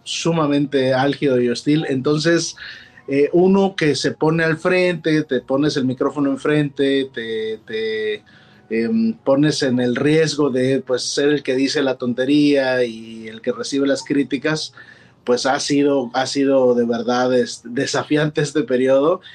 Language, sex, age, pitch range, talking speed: Spanish, male, 30-49, 125-150 Hz, 150 wpm